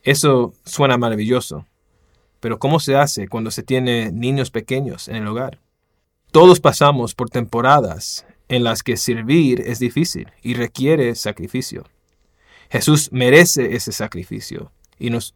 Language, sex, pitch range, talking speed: English, male, 115-150 Hz, 135 wpm